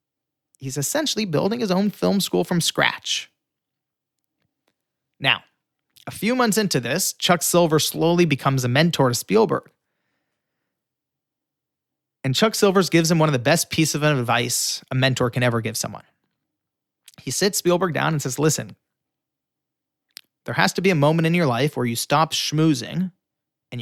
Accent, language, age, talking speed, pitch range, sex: American, English, 30-49, 155 wpm, 130-160 Hz, male